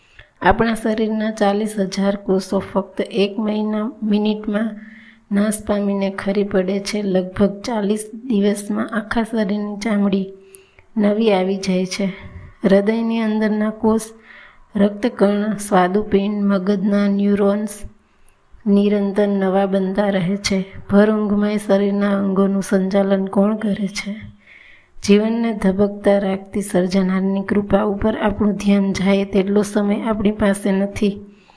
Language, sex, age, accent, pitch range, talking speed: Gujarati, female, 20-39, native, 195-215 Hz, 110 wpm